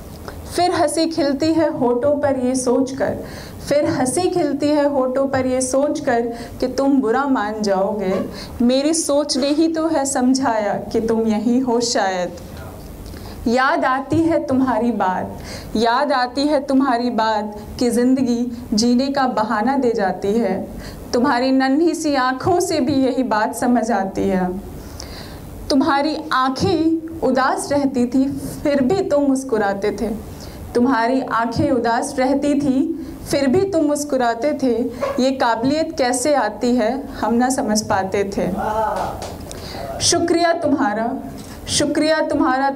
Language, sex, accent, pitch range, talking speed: Hindi, female, native, 225-285 Hz, 135 wpm